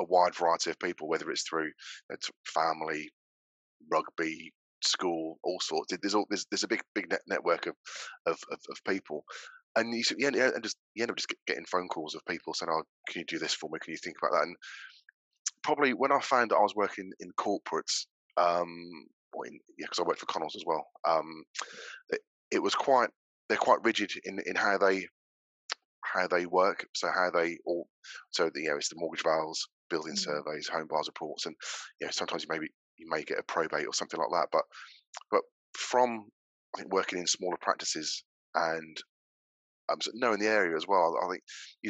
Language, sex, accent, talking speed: English, male, British, 205 wpm